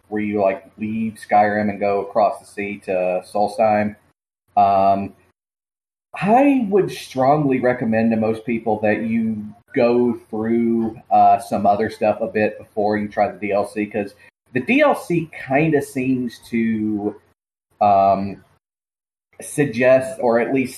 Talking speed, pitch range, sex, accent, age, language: 135 wpm, 105-130 Hz, male, American, 40-59, English